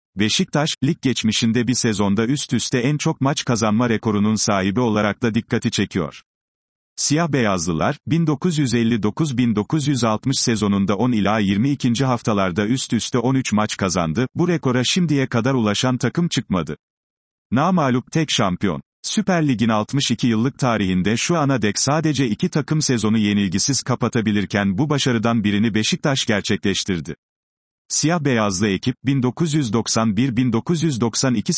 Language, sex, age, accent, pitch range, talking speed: Turkish, male, 40-59, native, 105-140 Hz, 120 wpm